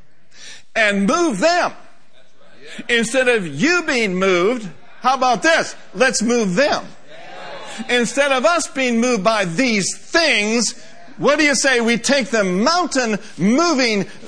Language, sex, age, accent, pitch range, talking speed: English, male, 50-69, American, 215-270 Hz, 130 wpm